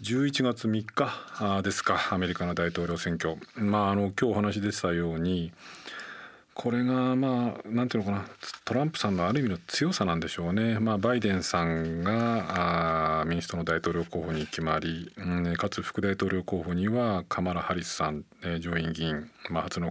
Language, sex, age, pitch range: Japanese, male, 40-59, 85-105 Hz